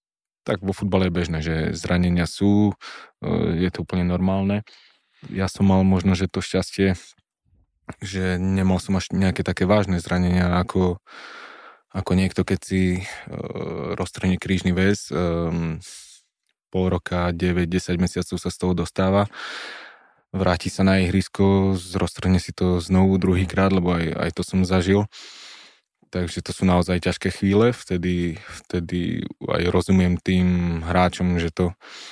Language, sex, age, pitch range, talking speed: Slovak, male, 20-39, 85-95 Hz, 140 wpm